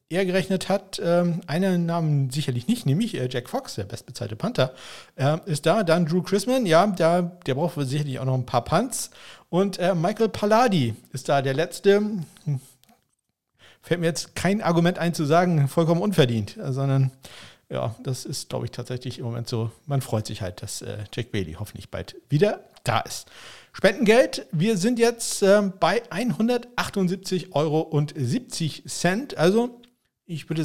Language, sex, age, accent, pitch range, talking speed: German, male, 50-69, German, 135-185 Hz, 150 wpm